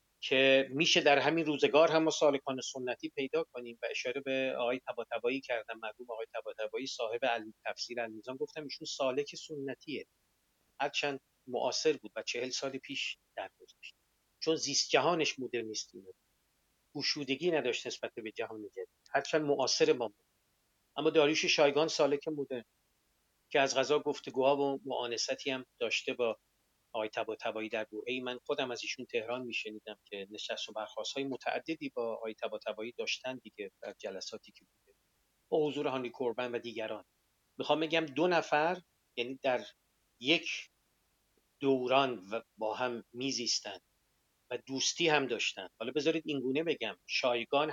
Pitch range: 120-155 Hz